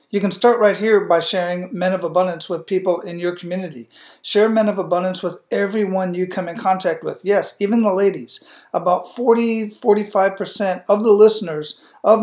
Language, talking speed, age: English, 175 wpm, 50-69